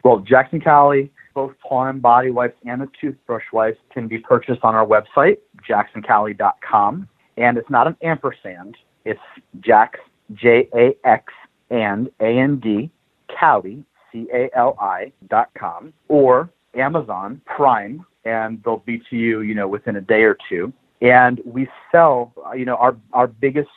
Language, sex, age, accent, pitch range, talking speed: English, male, 40-59, American, 115-140 Hz, 140 wpm